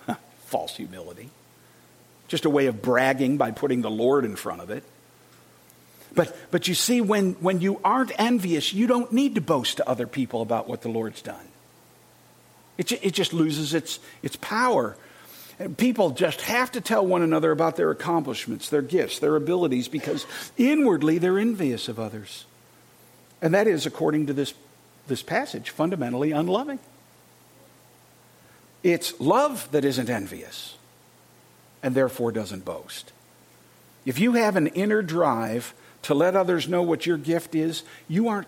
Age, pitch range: 50-69, 120-180 Hz